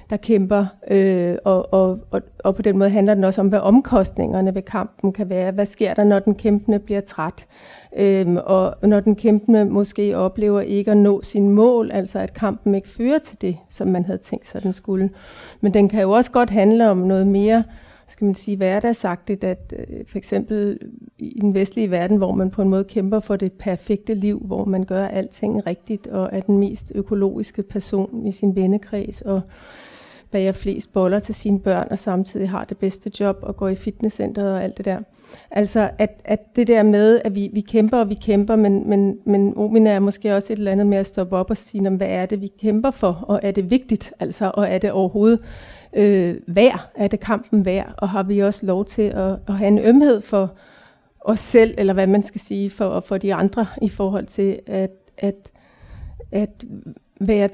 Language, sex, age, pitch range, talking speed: Danish, female, 40-59, 195-215 Hz, 210 wpm